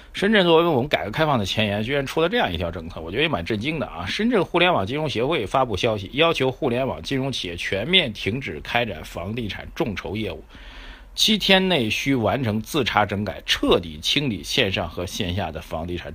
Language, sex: Chinese, male